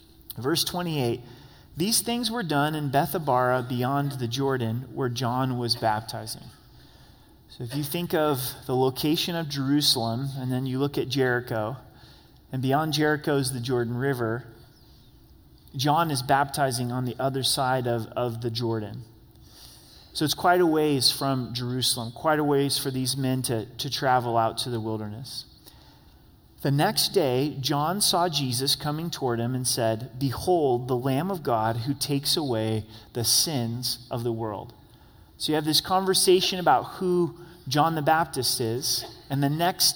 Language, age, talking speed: English, 30-49, 160 wpm